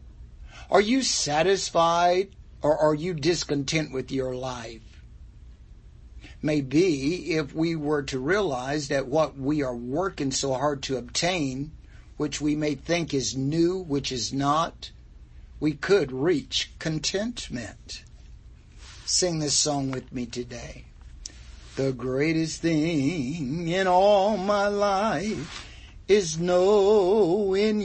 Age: 60-79